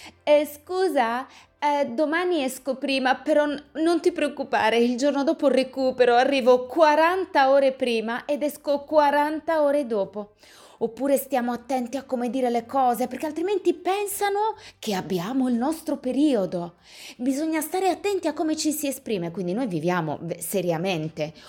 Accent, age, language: native, 20-39, Italian